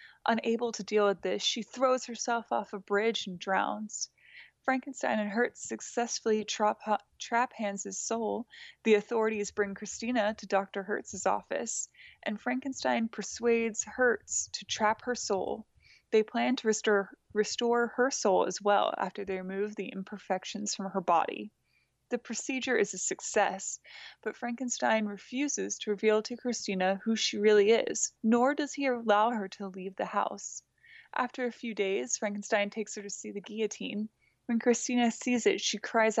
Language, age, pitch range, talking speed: English, 20-39, 205-240 Hz, 160 wpm